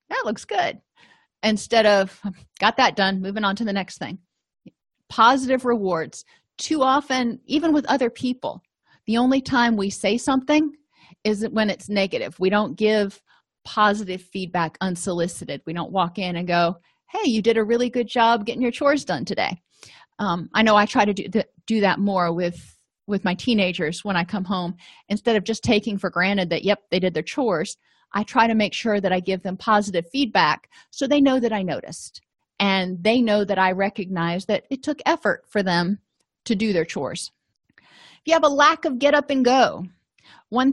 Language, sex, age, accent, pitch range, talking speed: English, female, 40-59, American, 185-240 Hz, 190 wpm